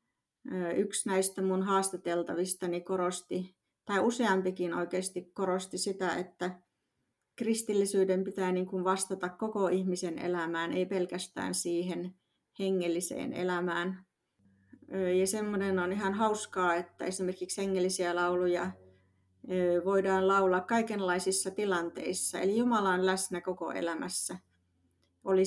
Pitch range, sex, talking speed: 175-195 Hz, female, 100 wpm